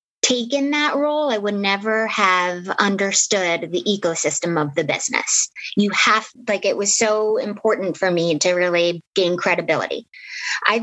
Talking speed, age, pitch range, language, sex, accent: 150 wpm, 20-39, 185-220 Hz, English, female, American